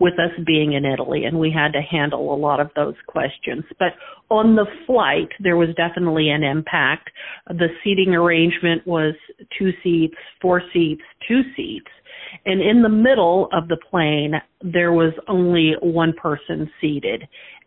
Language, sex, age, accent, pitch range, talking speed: English, female, 50-69, American, 155-190 Hz, 160 wpm